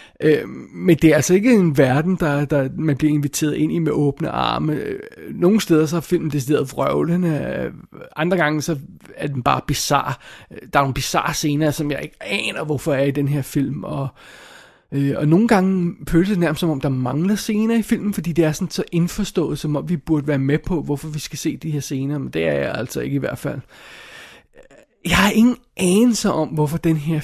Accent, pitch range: native, 150-190 Hz